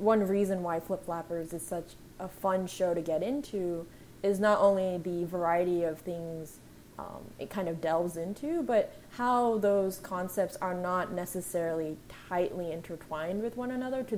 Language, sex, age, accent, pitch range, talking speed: English, female, 20-39, American, 170-205 Hz, 165 wpm